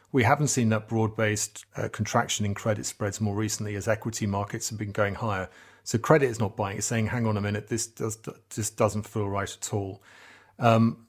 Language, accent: English, British